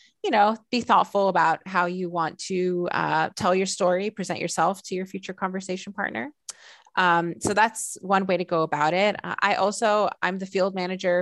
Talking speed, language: 185 wpm, English